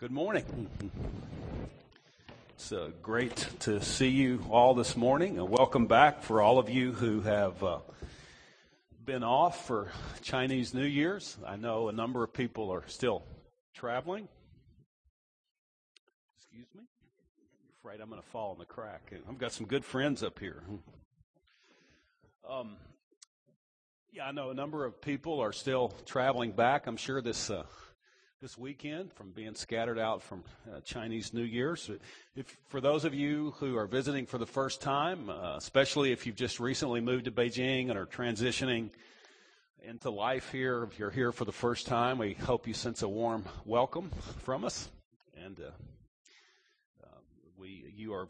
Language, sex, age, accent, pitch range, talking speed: English, male, 40-59, American, 110-135 Hz, 160 wpm